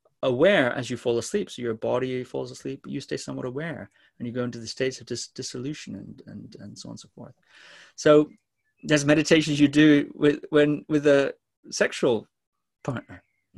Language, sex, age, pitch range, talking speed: English, male, 30-49, 115-150 Hz, 195 wpm